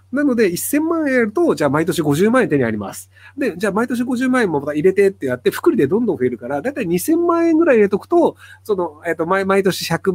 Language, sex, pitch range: Japanese, male, 135-225 Hz